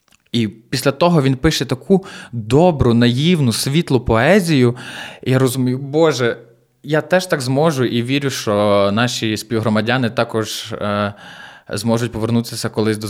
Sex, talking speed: male, 135 wpm